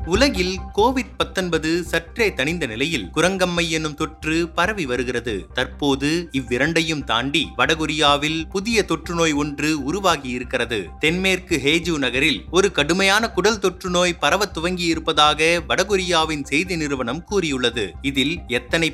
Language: Tamil